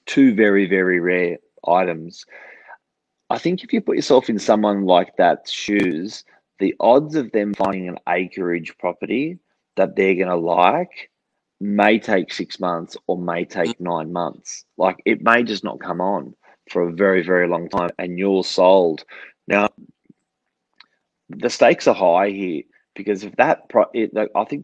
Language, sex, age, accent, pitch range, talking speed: English, male, 30-49, Australian, 85-105 Hz, 160 wpm